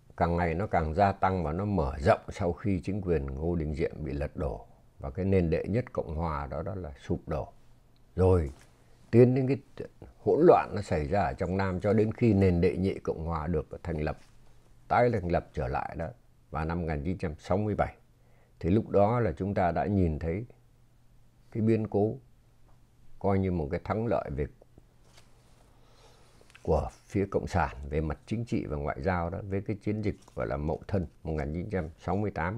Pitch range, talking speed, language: 80-110 Hz, 190 wpm, Vietnamese